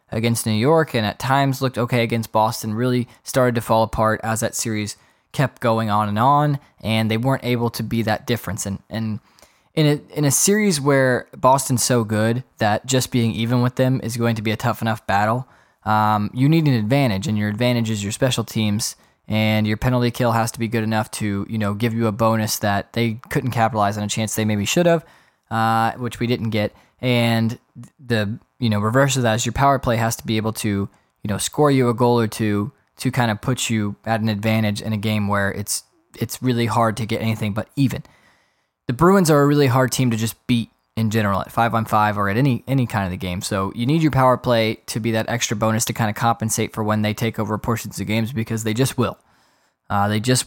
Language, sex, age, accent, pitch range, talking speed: English, male, 10-29, American, 110-125 Hz, 235 wpm